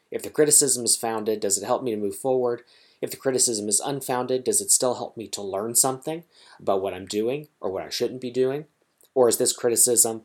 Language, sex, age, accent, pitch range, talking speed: English, male, 30-49, American, 110-145 Hz, 230 wpm